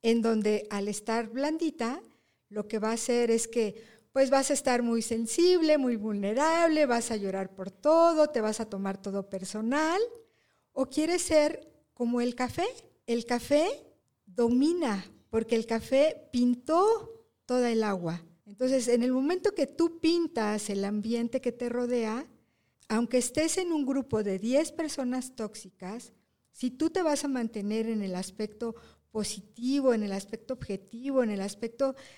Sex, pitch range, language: female, 215-285 Hz, Spanish